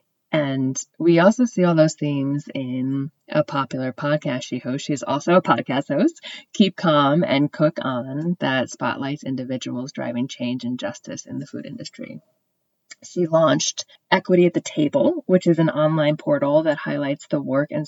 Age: 30-49